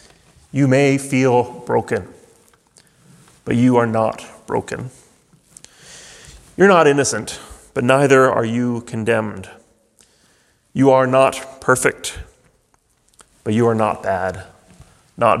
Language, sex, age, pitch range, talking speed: English, male, 30-49, 110-140 Hz, 105 wpm